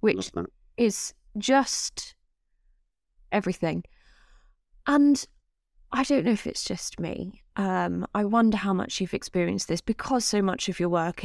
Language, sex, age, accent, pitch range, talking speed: English, female, 20-39, British, 175-210 Hz, 140 wpm